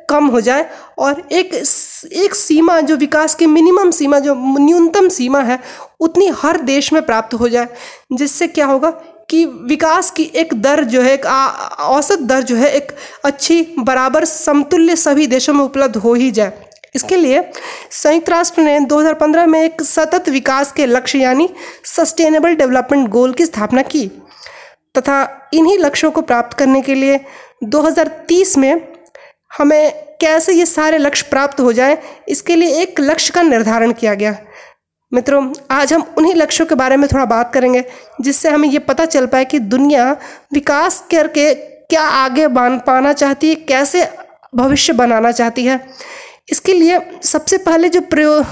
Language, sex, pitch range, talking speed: Hindi, female, 265-325 Hz, 165 wpm